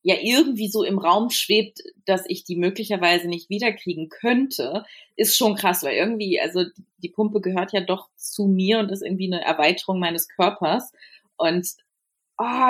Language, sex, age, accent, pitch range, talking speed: German, female, 30-49, German, 180-225 Hz, 165 wpm